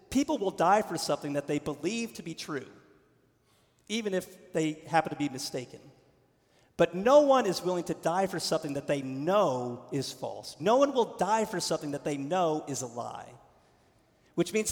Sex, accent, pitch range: male, American, 150-215 Hz